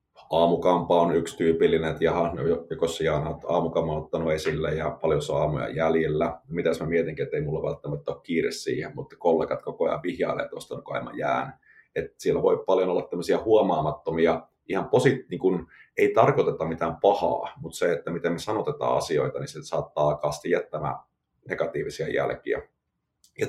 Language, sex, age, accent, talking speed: Finnish, male, 30-49, native, 160 wpm